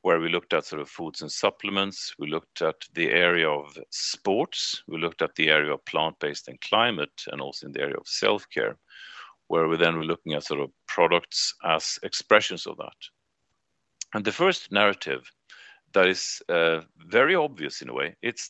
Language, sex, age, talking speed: English, male, 40-59, 190 wpm